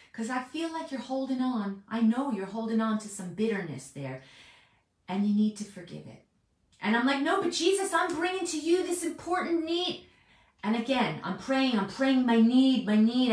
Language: English